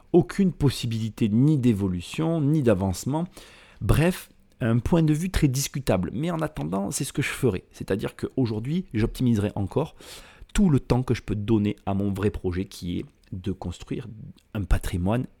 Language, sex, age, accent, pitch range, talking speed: French, male, 40-59, French, 95-125 Hz, 165 wpm